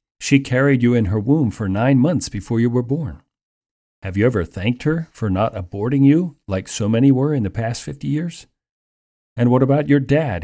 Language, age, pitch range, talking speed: English, 40-59, 95-130 Hz, 205 wpm